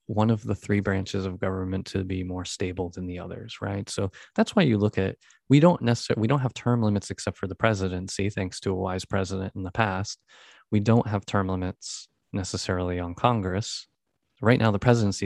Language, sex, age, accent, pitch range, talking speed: English, male, 20-39, American, 95-115 Hz, 210 wpm